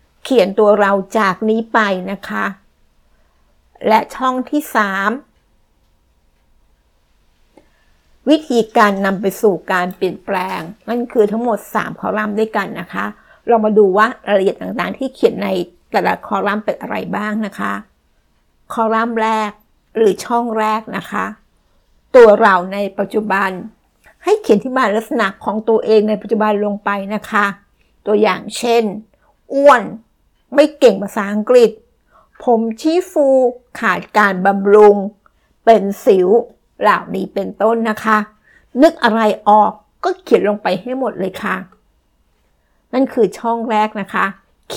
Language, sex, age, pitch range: Thai, female, 60-79, 200-240 Hz